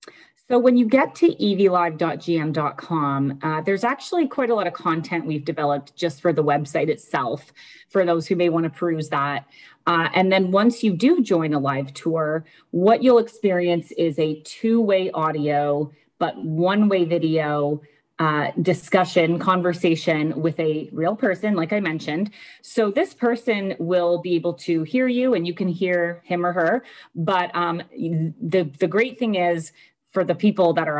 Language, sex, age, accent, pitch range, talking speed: English, female, 30-49, American, 160-200 Hz, 170 wpm